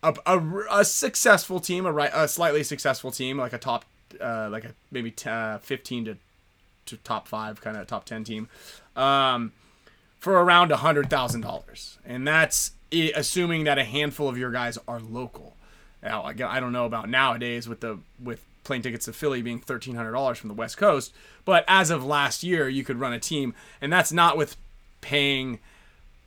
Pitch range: 120-160 Hz